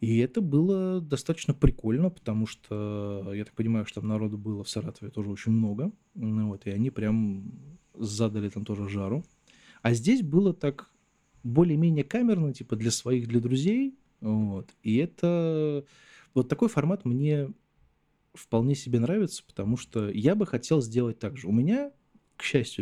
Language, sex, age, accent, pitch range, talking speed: Russian, male, 20-39, native, 110-155 Hz, 155 wpm